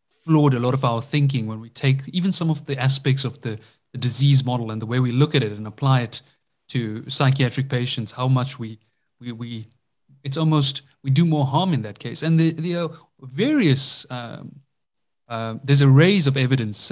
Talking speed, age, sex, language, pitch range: 205 wpm, 30-49, male, English, 120-145 Hz